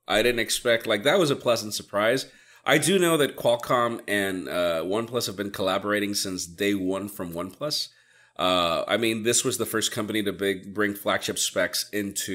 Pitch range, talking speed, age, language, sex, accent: 100-135 Hz, 190 wpm, 30-49, English, male, American